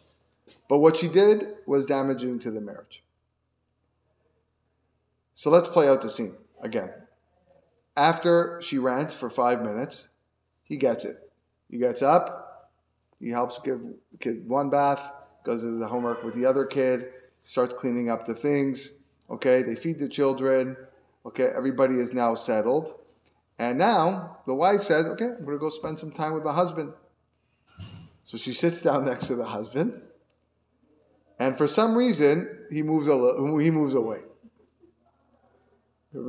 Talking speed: 155 wpm